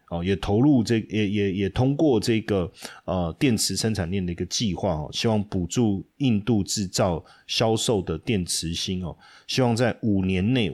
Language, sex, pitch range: Chinese, male, 90-115 Hz